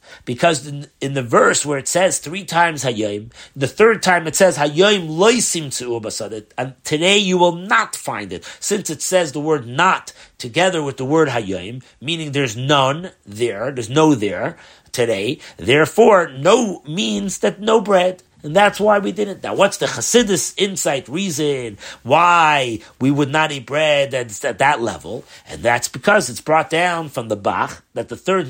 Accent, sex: American, male